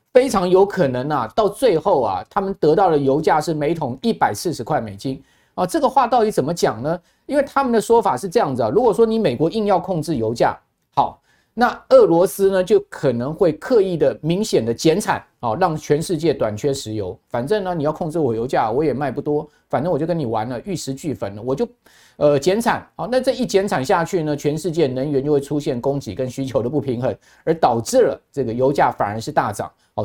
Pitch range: 135-195 Hz